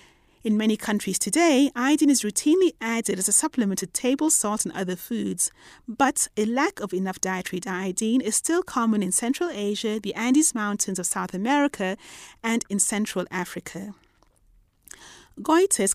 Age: 30-49